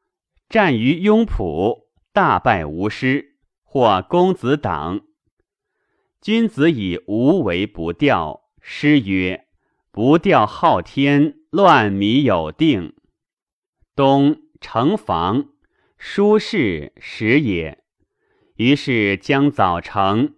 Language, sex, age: Chinese, male, 30-49